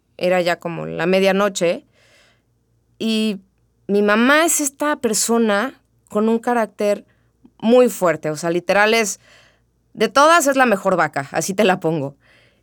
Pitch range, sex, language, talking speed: 140-195 Hz, female, Spanish, 145 wpm